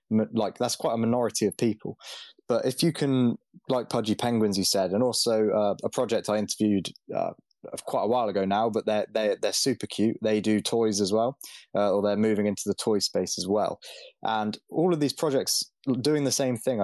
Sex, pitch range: male, 100-120 Hz